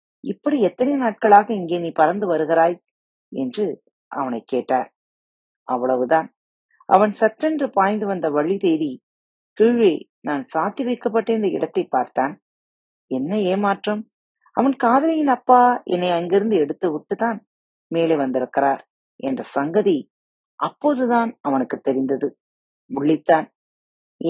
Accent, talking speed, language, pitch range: native, 95 wpm, Tamil, 150-235 Hz